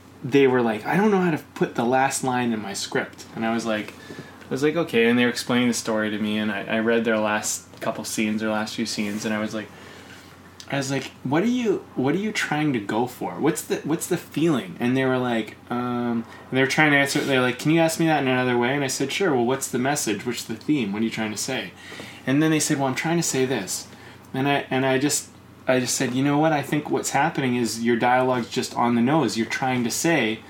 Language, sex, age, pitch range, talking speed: English, male, 20-39, 115-155 Hz, 275 wpm